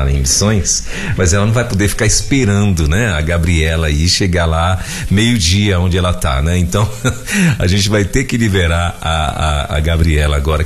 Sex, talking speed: male, 185 wpm